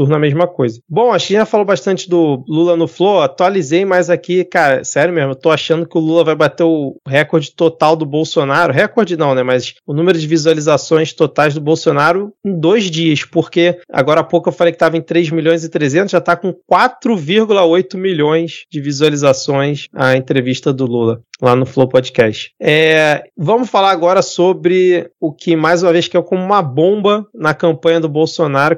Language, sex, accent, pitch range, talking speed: Portuguese, male, Brazilian, 150-185 Hz, 195 wpm